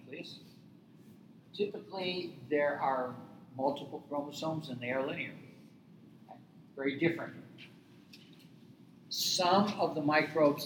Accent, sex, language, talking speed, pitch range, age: American, male, English, 85 wpm, 120-165 Hz, 60-79